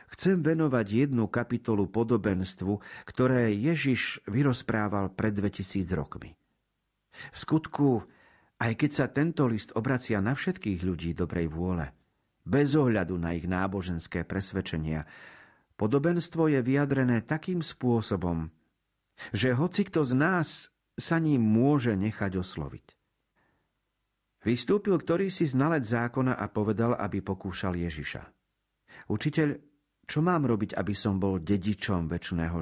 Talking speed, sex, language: 120 wpm, male, Slovak